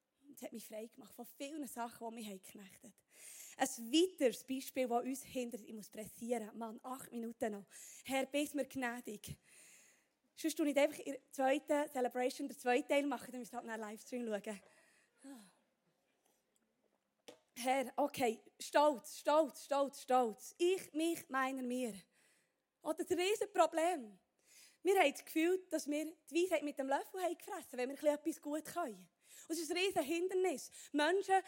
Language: German